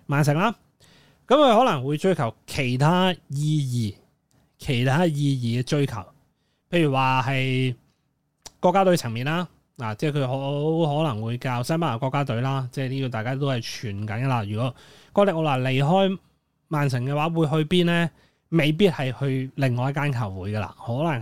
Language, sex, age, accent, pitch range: Chinese, male, 20-39, native, 125-160 Hz